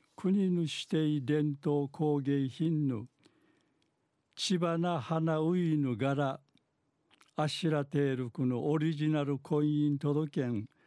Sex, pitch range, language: male, 130-160 Hz, Japanese